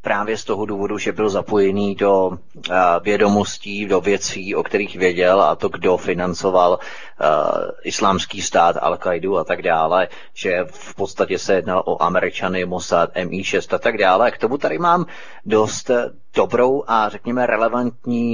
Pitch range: 100-120 Hz